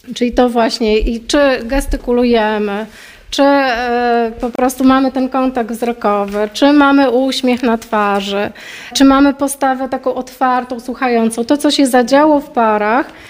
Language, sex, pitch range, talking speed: Polish, female, 230-280 Hz, 140 wpm